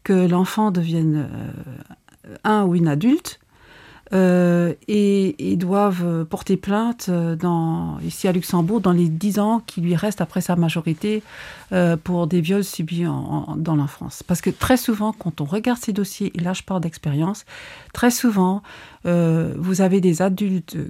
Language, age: French, 50-69